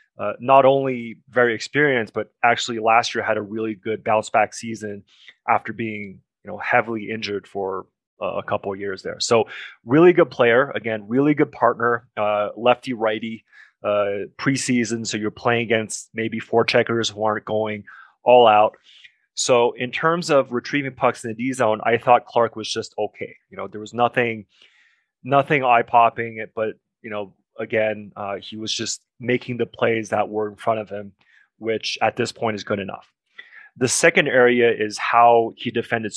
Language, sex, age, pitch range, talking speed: English, male, 20-39, 110-125 Hz, 180 wpm